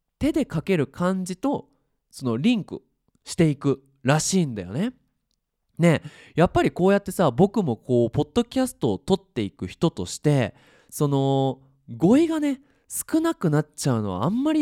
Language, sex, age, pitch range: Japanese, male, 20-39, 130-220 Hz